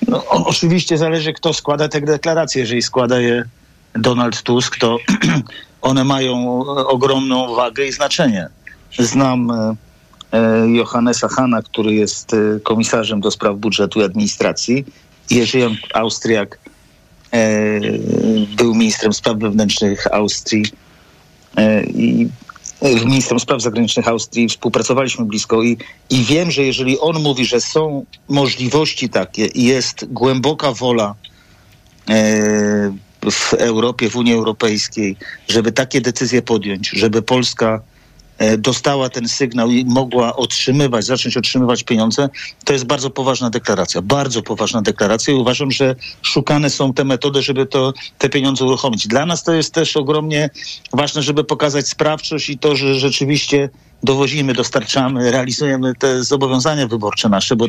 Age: 50-69